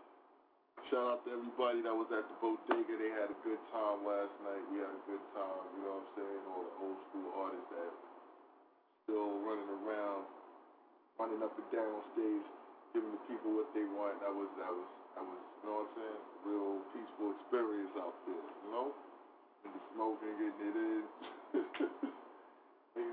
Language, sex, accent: English, male, American